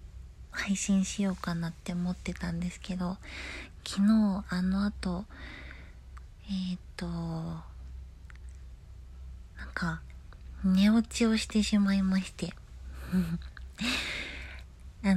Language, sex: Japanese, female